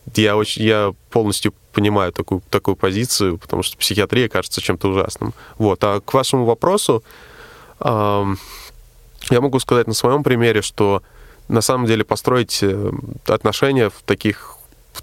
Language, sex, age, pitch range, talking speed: Russian, male, 20-39, 100-115 Hz, 140 wpm